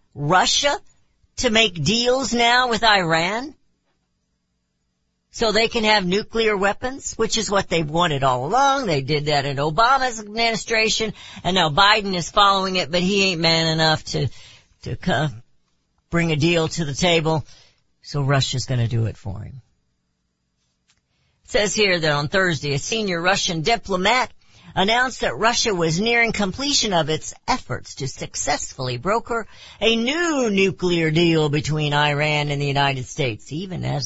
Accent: American